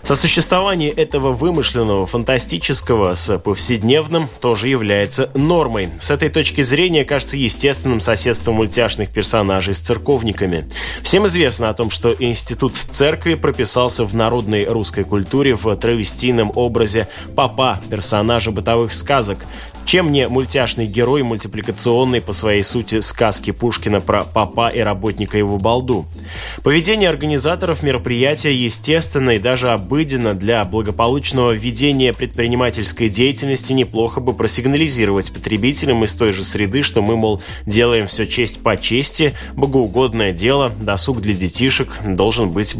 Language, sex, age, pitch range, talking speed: Russian, male, 20-39, 105-130 Hz, 125 wpm